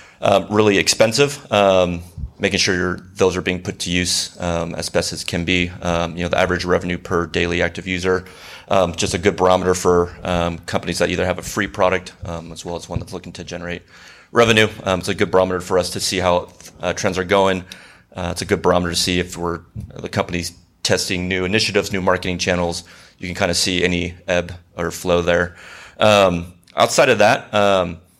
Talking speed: 210 wpm